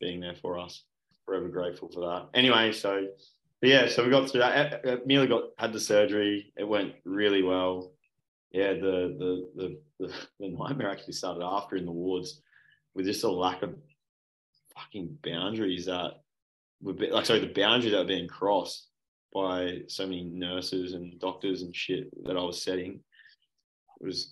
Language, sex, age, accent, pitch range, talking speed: English, male, 20-39, Australian, 90-100 Hz, 175 wpm